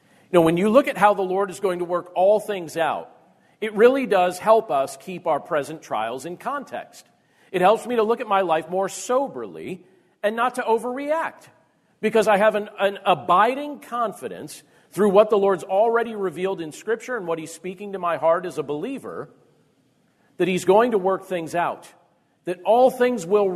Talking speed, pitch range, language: 195 wpm, 165-220 Hz, English